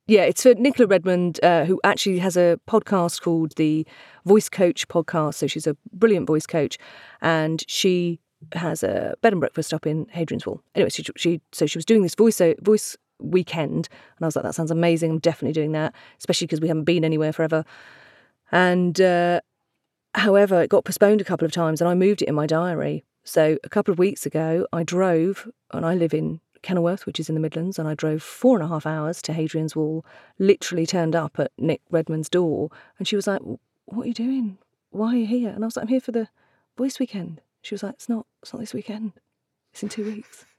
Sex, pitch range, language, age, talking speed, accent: female, 160-210 Hz, English, 40-59, 220 wpm, British